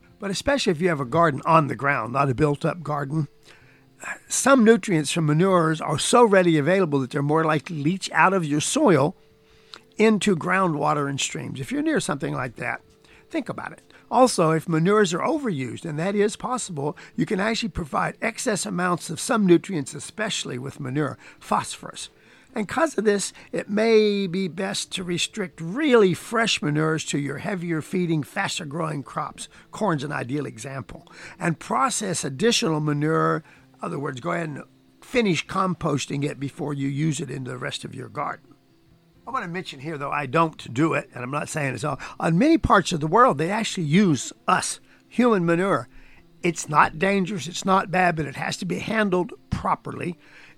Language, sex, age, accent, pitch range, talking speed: English, male, 50-69, American, 150-200 Hz, 185 wpm